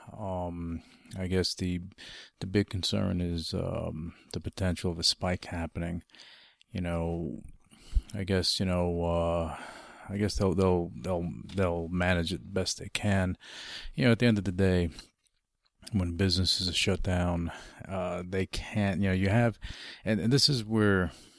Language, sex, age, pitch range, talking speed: English, male, 40-59, 85-100 Hz, 165 wpm